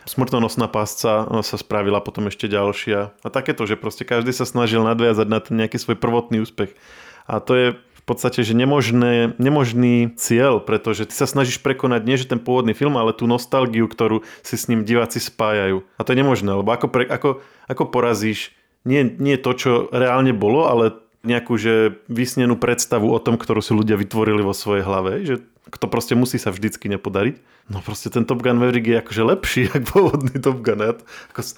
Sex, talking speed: male, 195 wpm